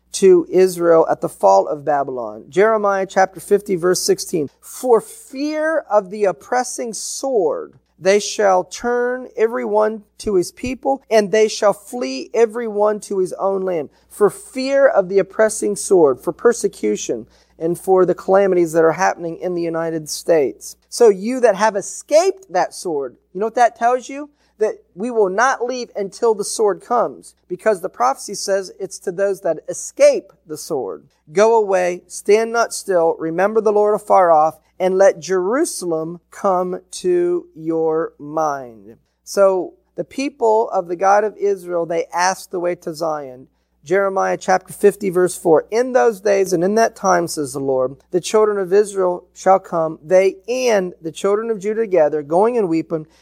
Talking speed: 165 wpm